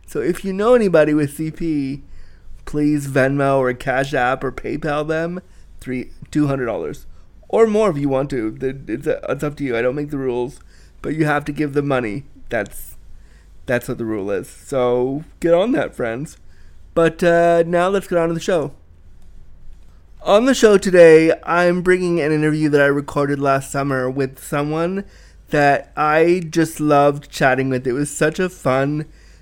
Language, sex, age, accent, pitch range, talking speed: English, male, 30-49, American, 130-165 Hz, 175 wpm